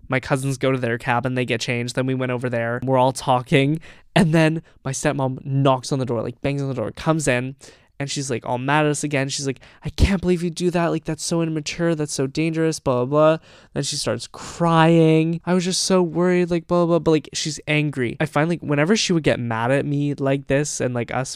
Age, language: 20-39, English